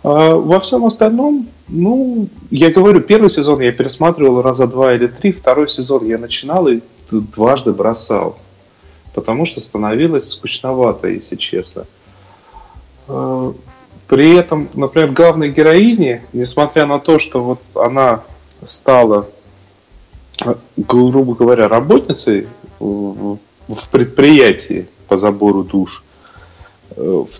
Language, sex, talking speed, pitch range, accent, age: Russian, male, 105 wpm, 115-155 Hz, native, 30-49